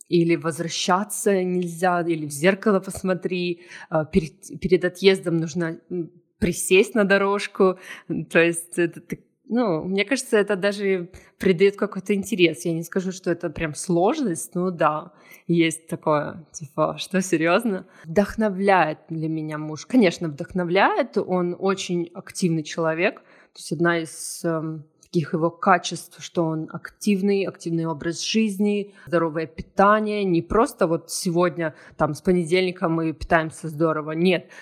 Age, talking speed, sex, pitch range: 20-39, 130 wpm, female, 165-195 Hz